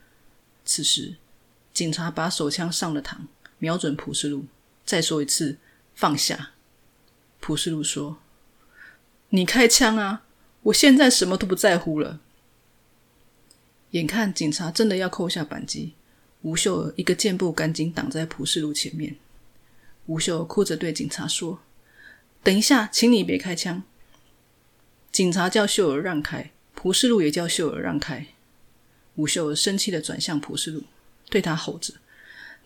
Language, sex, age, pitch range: Chinese, female, 20-39, 150-205 Hz